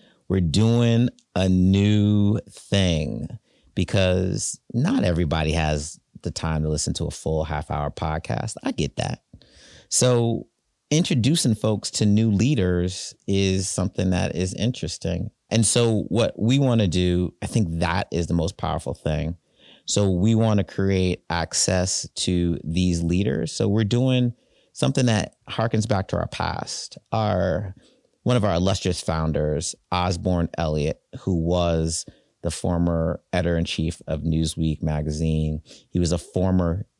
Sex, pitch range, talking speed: male, 80-105 Hz, 140 wpm